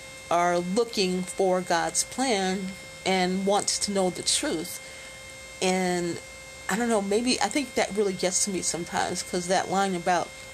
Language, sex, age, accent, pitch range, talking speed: English, female, 40-59, American, 175-205 Hz, 160 wpm